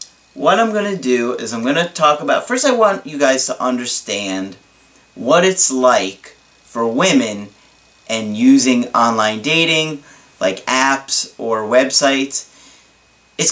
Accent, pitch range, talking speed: American, 125-175 Hz, 140 wpm